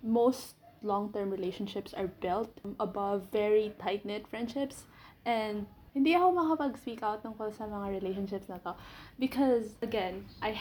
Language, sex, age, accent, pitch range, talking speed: English, female, 20-39, Filipino, 200-255 Hz, 130 wpm